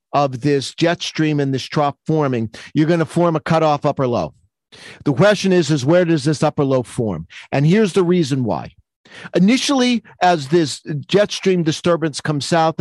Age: 50-69